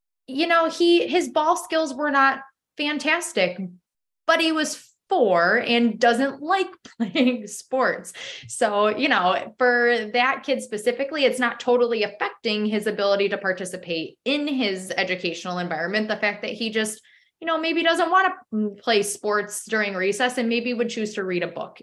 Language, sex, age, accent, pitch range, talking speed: English, female, 20-39, American, 185-255 Hz, 165 wpm